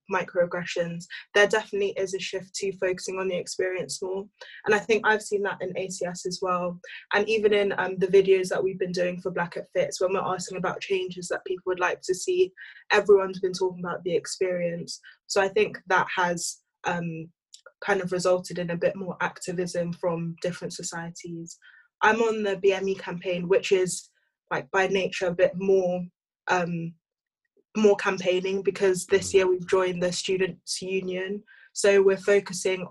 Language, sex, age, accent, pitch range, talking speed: English, female, 20-39, British, 180-200 Hz, 175 wpm